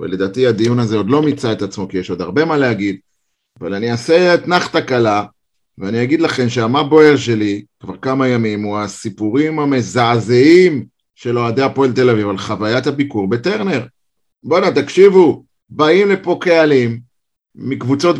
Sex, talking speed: male, 150 wpm